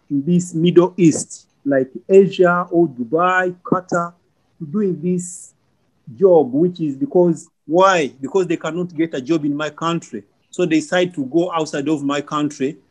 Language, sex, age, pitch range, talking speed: English, male, 50-69, 145-185 Hz, 160 wpm